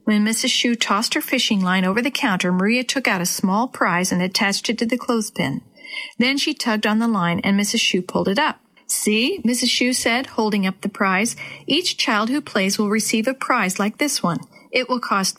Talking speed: 220 wpm